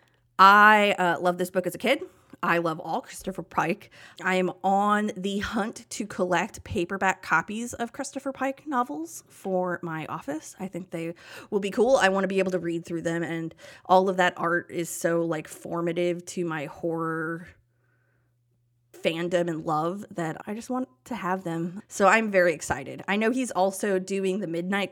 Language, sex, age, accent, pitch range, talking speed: English, female, 20-39, American, 170-225 Hz, 185 wpm